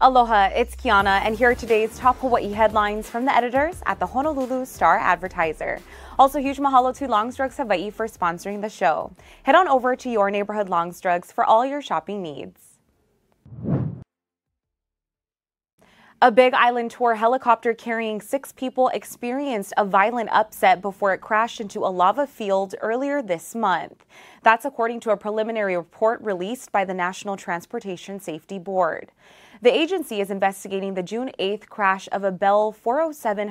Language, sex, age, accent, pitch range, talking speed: English, female, 20-39, American, 195-235 Hz, 160 wpm